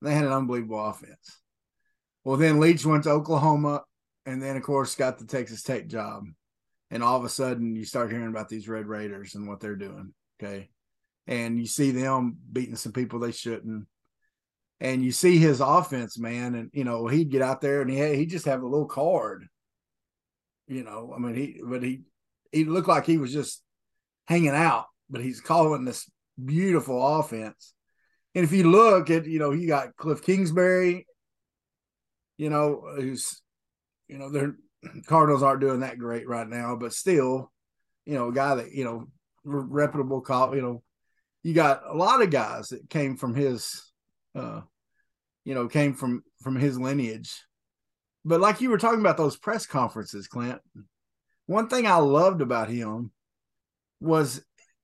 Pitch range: 120-155 Hz